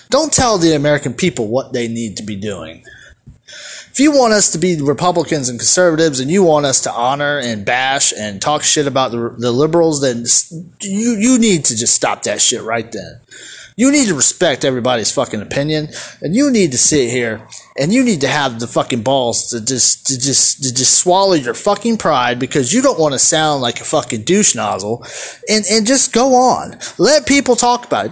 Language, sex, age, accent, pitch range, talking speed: English, male, 30-49, American, 130-210 Hz, 205 wpm